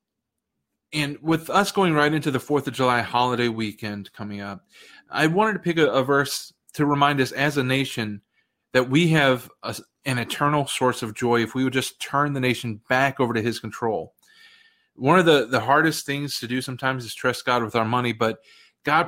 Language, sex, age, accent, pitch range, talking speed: English, male, 30-49, American, 120-145 Hz, 200 wpm